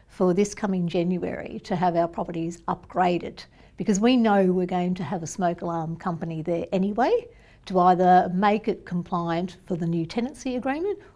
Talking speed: 170 wpm